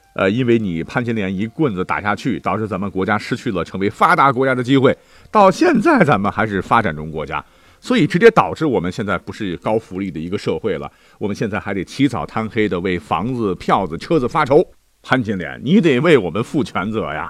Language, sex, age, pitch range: Chinese, male, 50-69, 95-145 Hz